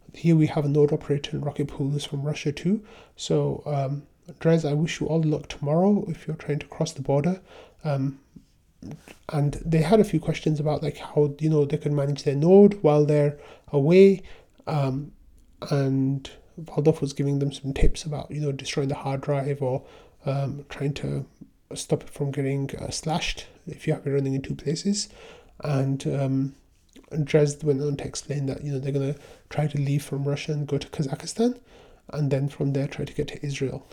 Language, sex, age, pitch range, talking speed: English, male, 30-49, 140-155 Hz, 200 wpm